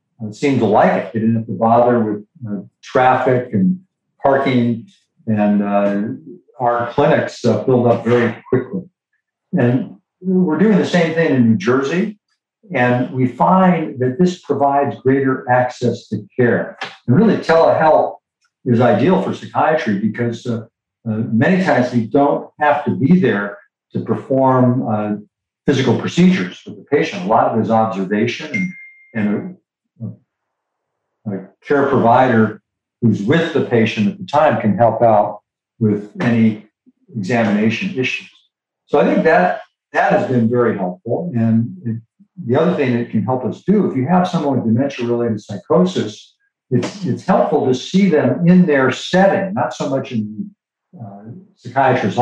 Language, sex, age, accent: English, male, 60-79, American